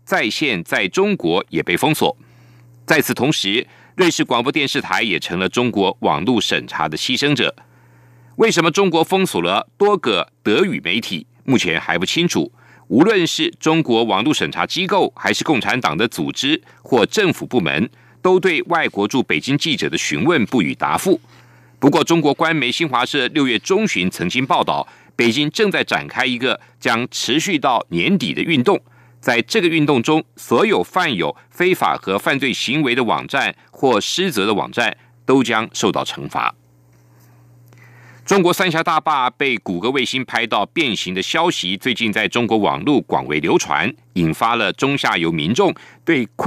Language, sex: German, male